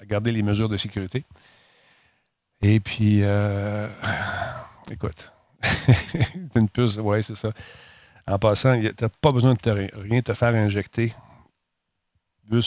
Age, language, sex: 40-59, French, male